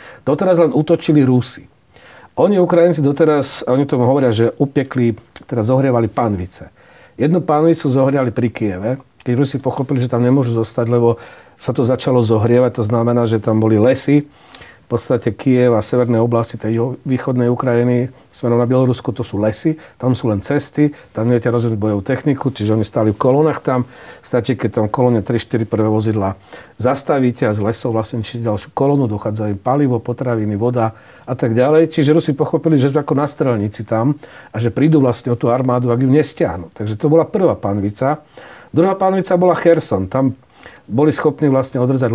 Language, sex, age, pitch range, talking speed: Slovak, male, 40-59, 115-150 Hz, 170 wpm